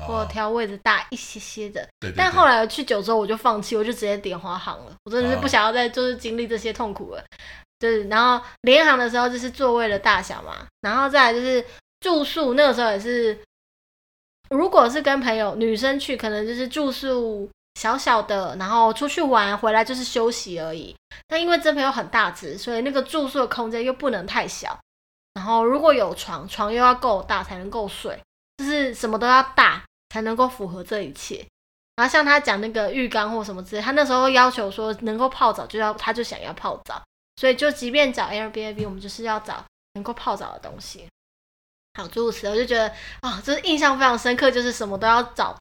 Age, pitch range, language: 20-39, 215-260 Hz, Chinese